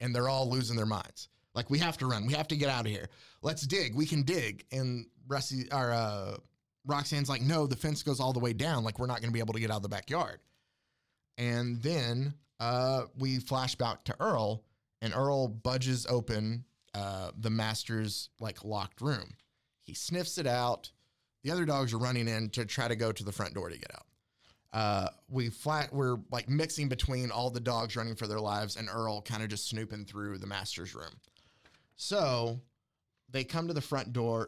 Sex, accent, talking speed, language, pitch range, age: male, American, 205 wpm, English, 110-135 Hz, 20-39